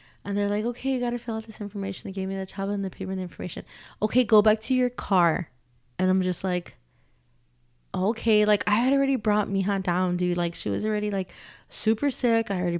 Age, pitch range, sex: 20-39, 185-245 Hz, female